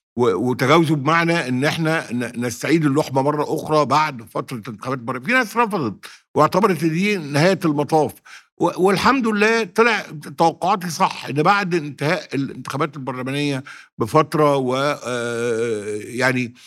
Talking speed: 110 wpm